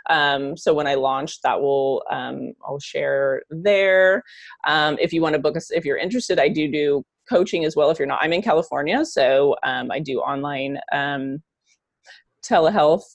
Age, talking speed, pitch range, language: 30-49, 185 wpm, 145-190 Hz, English